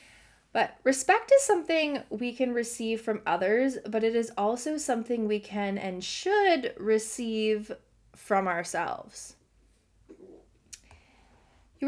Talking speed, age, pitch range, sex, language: 110 wpm, 20-39, 190-265 Hz, female, English